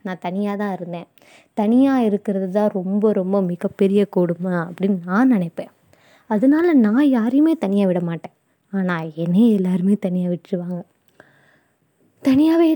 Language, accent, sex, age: Tamil, native, female, 20-39